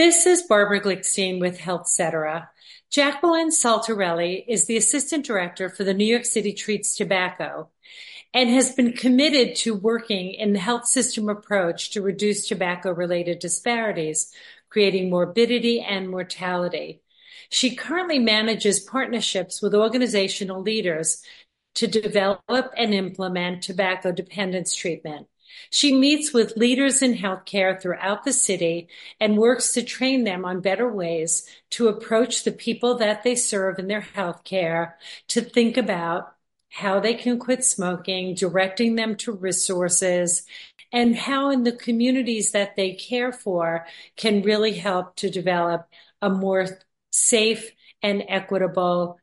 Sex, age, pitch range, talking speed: female, 50-69, 185-235 Hz, 135 wpm